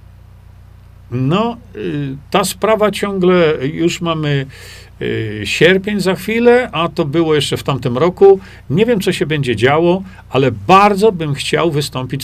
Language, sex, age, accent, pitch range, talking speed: Polish, male, 50-69, native, 125-175 Hz, 130 wpm